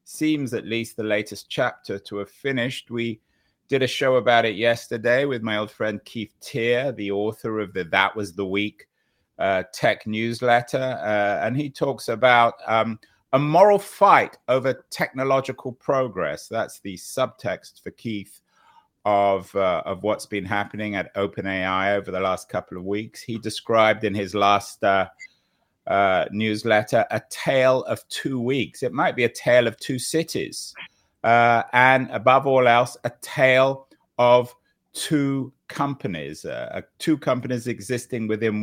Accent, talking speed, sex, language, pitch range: British, 150 wpm, male, English, 105-130 Hz